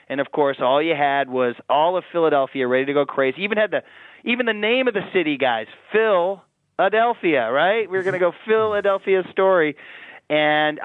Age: 30-49